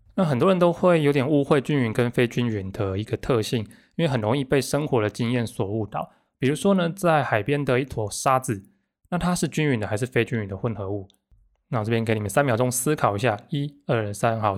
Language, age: Chinese, 20-39